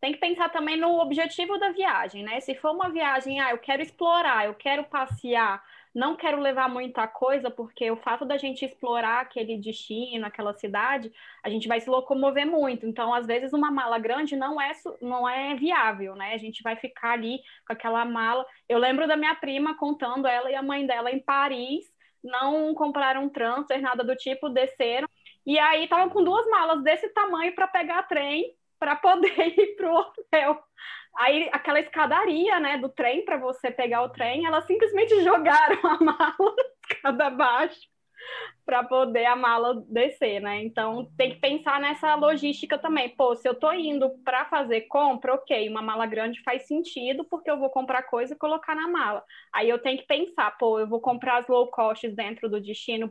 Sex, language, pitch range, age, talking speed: female, Portuguese, 235-310 Hz, 10-29, 190 wpm